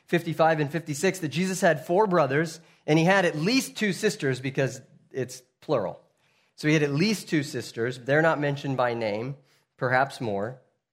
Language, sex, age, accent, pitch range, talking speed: English, male, 30-49, American, 125-160 Hz, 175 wpm